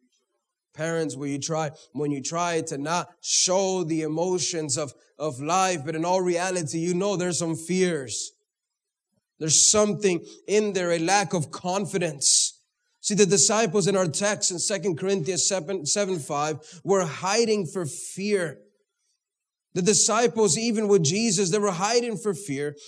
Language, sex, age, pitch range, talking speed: English, male, 30-49, 160-210 Hz, 150 wpm